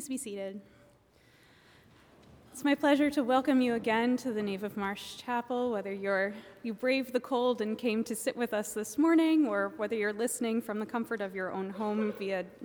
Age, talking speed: 20-39, 195 wpm